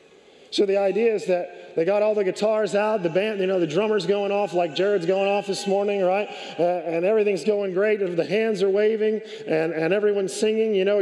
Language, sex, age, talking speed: English, male, 40-59, 230 wpm